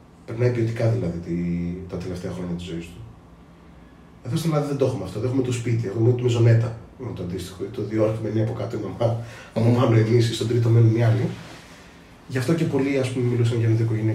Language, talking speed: Greek, 130 wpm